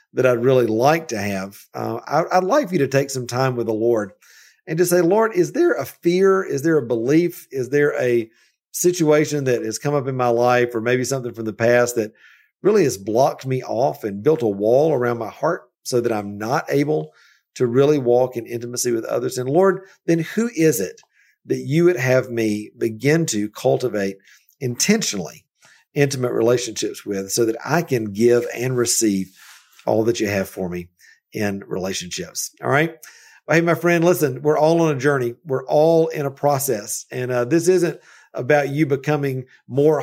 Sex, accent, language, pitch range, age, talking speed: male, American, English, 115-160 Hz, 50-69, 200 wpm